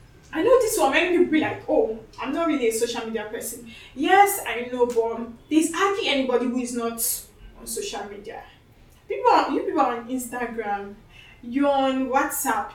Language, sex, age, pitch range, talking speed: English, female, 10-29, 240-315 Hz, 185 wpm